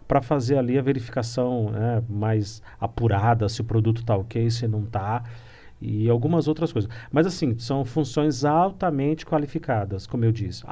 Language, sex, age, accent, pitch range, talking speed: Portuguese, male, 50-69, Brazilian, 115-160 Hz, 160 wpm